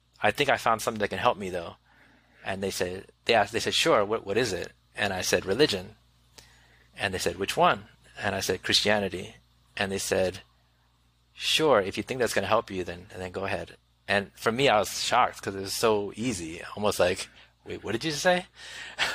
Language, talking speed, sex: English, 220 wpm, male